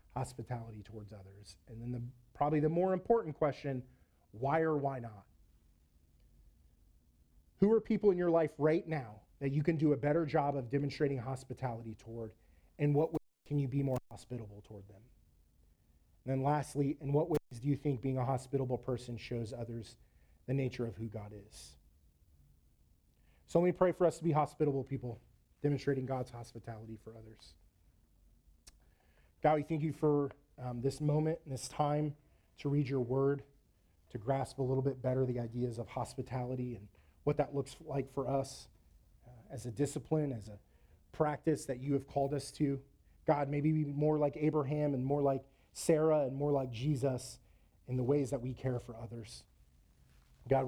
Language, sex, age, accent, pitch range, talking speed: English, male, 30-49, American, 105-145 Hz, 175 wpm